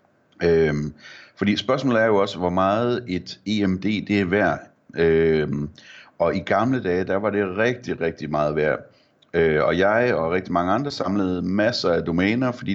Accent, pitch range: native, 85-105 Hz